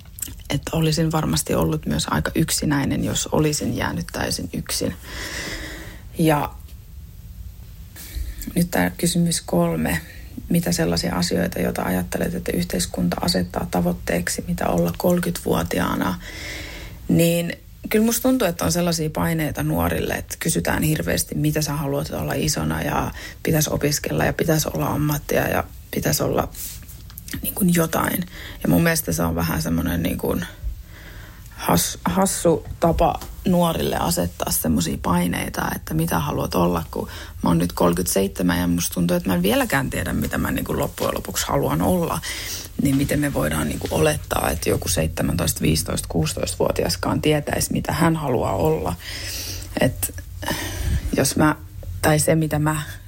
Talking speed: 140 wpm